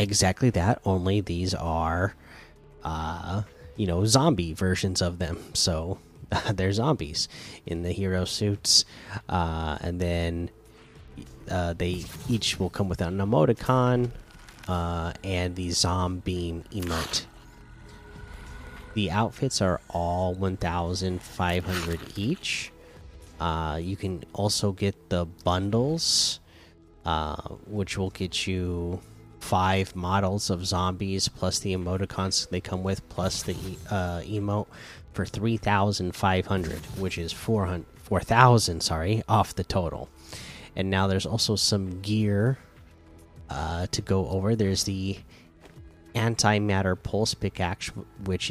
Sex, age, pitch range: male, 30-49, 85-105 Hz